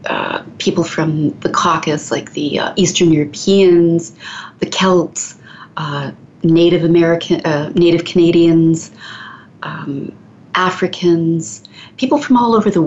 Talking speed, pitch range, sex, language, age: 115 wpm, 160-185 Hz, female, English, 40-59